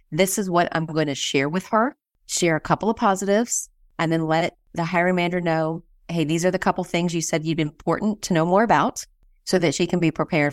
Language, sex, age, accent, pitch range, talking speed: English, female, 30-49, American, 155-195 Hz, 240 wpm